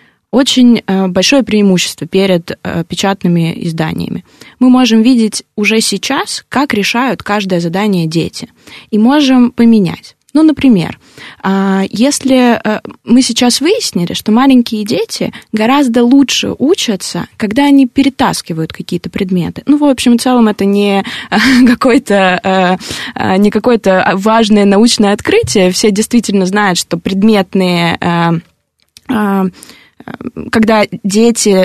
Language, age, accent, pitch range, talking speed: Russian, 20-39, native, 190-250 Hz, 105 wpm